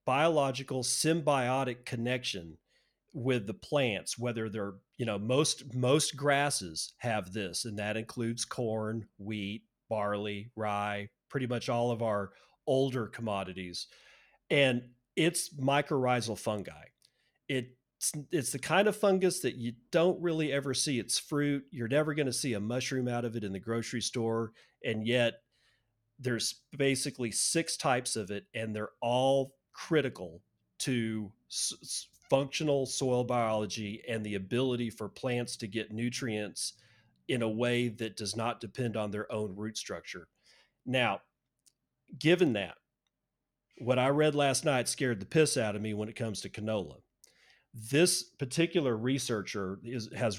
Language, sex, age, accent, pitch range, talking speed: English, male, 40-59, American, 110-135 Hz, 145 wpm